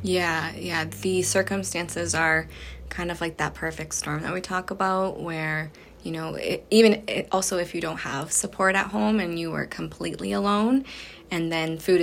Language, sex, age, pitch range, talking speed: English, female, 20-39, 160-190 Hz, 175 wpm